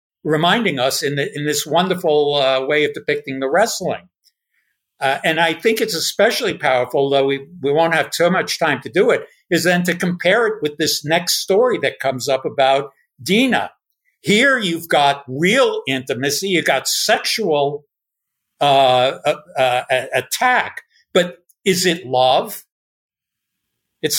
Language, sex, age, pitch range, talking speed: English, male, 60-79, 135-180 Hz, 155 wpm